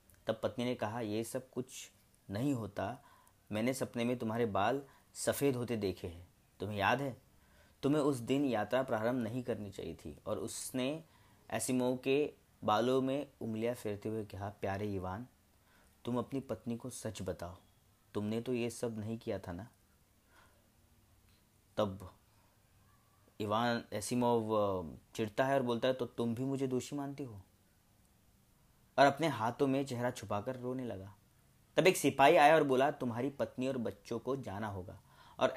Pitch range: 105-135 Hz